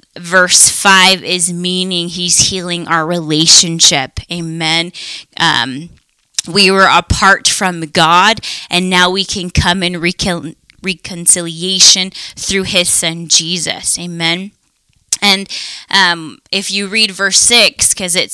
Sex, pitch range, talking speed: female, 170-190 Hz, 120 wpm